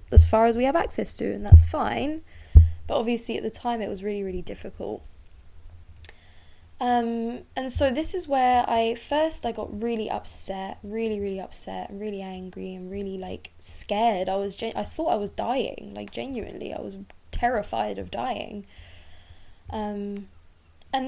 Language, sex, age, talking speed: English, female, 10-29, 165 wpm